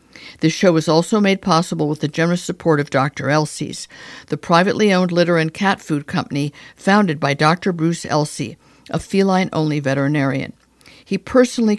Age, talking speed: 50-69, 160 wpm